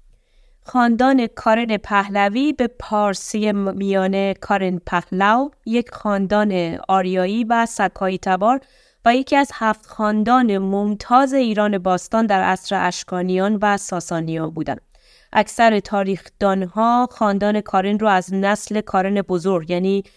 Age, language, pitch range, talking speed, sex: 20-39, Persian, 190-230 Hz, 120 wpm, female